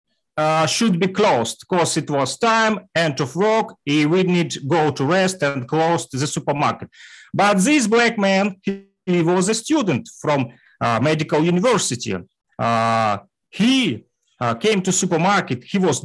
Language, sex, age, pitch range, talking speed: Russian, male, 40-59, 160-220 Hz, 160 wpm